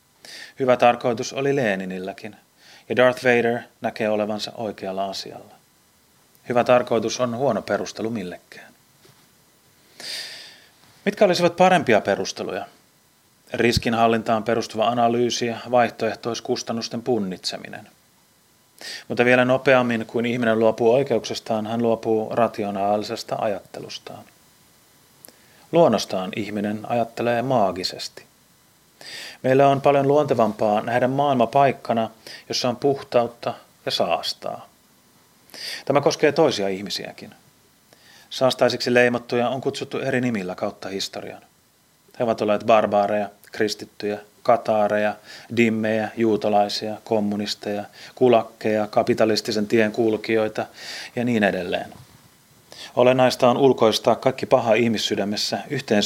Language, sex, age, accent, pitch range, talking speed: Finnish, male, 30-49, native, 105-125 Hz, 95 wpm